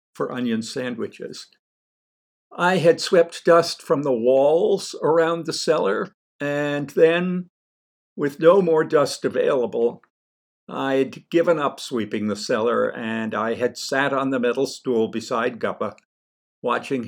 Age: 60-79